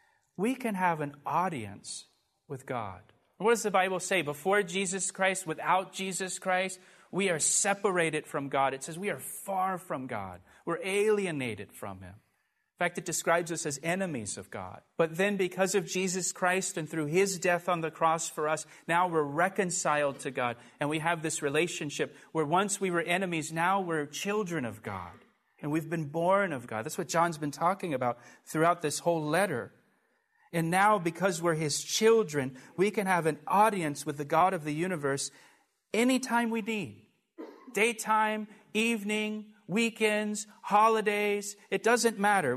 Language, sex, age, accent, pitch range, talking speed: English, male, 40-59, American, 155-200 Hz, 170 wpm